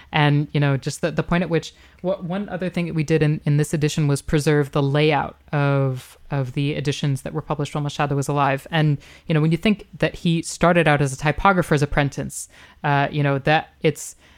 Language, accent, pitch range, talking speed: English, American, 145-165 Hz, 225 wpm